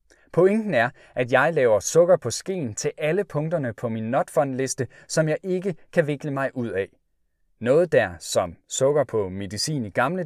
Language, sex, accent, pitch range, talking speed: Danish, male, native, 115-165 Hz, 180 wpm